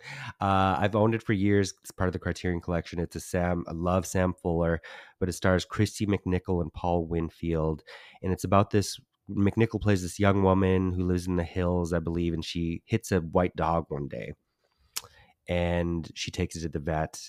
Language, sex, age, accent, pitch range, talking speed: English, male, 30-49, American, 85-100 Hz, 200 wpm